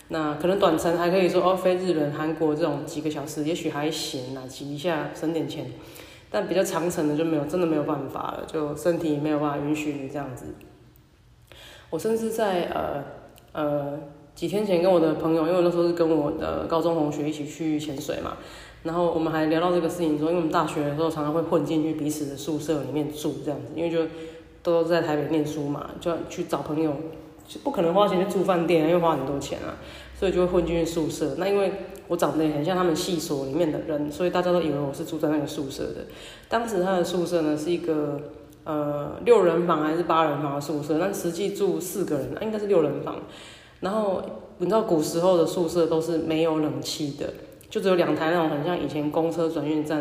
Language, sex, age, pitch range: Chinese, female, 20-39, 150-175 Hz